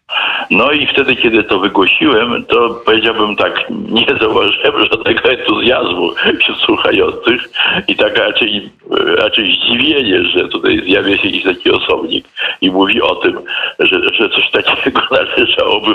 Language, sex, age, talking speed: Polish, male, 60-79, 130 wpm